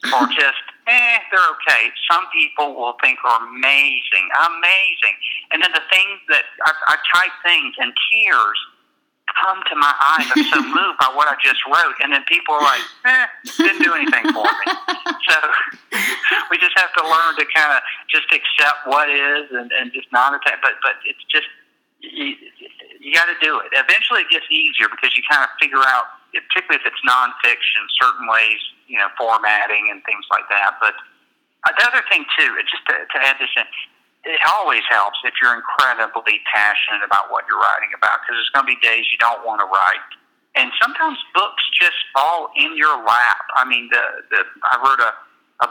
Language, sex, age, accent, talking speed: English, male, 50-69, American, 195 wpm